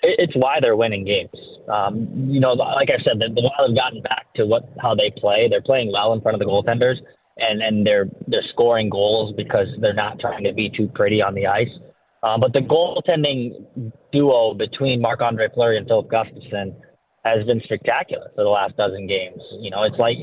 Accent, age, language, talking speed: American, 20-39, English, 200 wpm